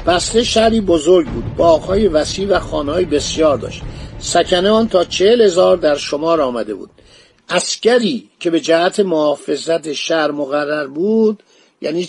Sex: male